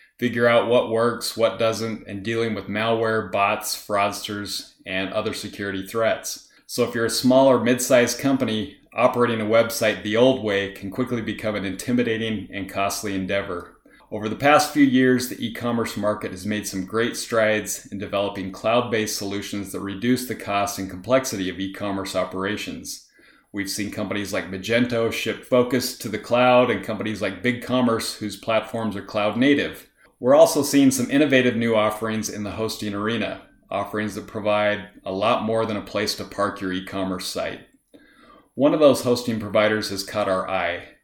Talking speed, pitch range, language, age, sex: 170 wpm, 100-120 Hz, English, 30-49, male